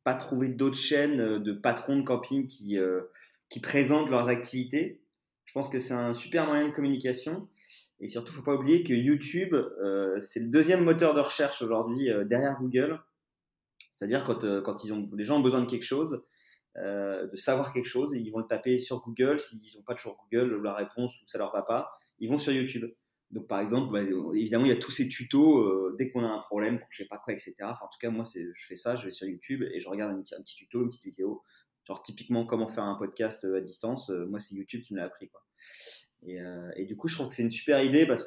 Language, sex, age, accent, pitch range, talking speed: French, male, 30-49, French, 105-140 Hz, 245 wpm